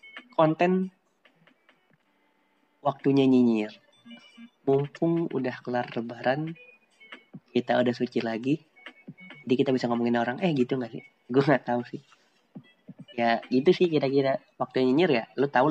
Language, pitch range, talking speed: English, 115-140 Hz, 125 wpm